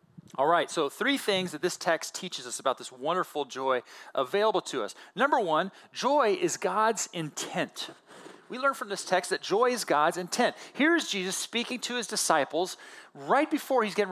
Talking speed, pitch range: 185 wpm, 170-240 Hz